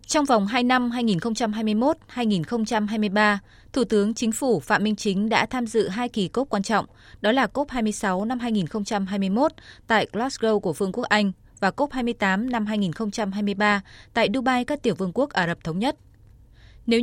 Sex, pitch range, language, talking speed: female, 190-240 Hz, Vietnamese, 170 wpm